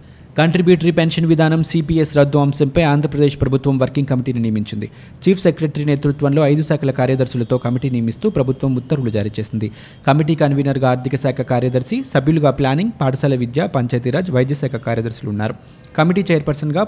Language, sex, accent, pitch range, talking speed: Telugu, male, native, 125-150 Hz, 135 wpm